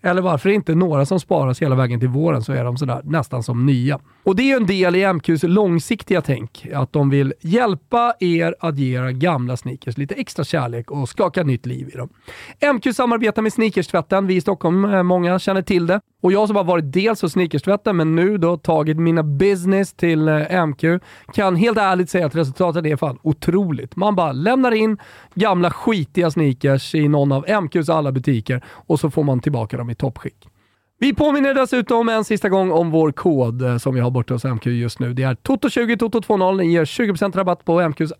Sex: male